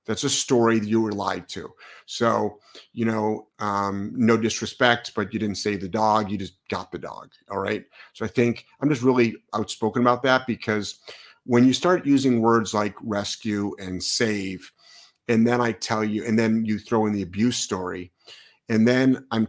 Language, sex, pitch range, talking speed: English, male, 100-115 Hz, 190 wpm